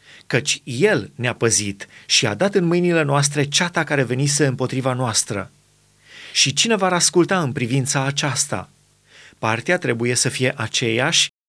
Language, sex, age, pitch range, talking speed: Romanian, male, 30-49, 130-165 Hz, 140 wpm